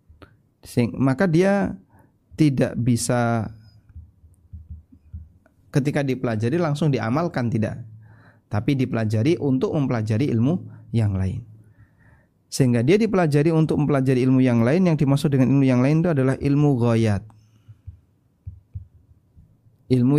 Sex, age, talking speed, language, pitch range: male, 30-49, 105 wpm, Indonesian, 110-135 Hz